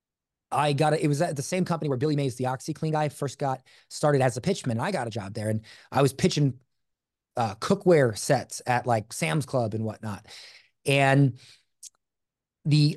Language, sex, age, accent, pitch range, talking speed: English, male, 30-49, American, 130-170 Hz, 190 wpm